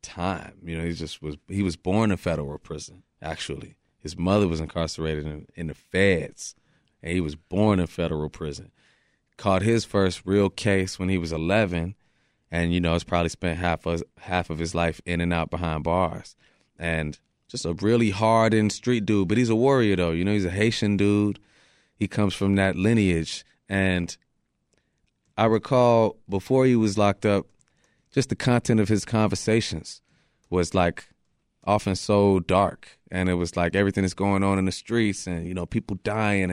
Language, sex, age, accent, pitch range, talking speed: English, male, 20-39, American, 85-110 Hz, 180 wpm